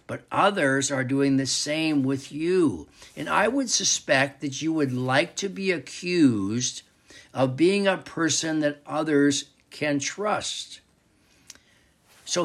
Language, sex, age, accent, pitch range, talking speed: English, male, 60-79, American, 135-190 Hz, 135 wpm